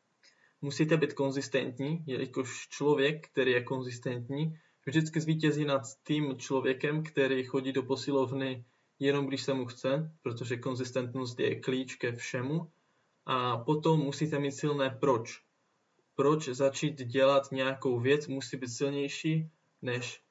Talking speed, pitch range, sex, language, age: 125 wpm, 130-150 Hz, male, Czech, 20-39